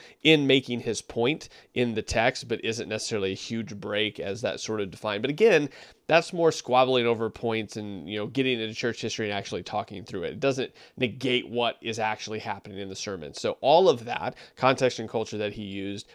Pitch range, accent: 110-130 Hz, American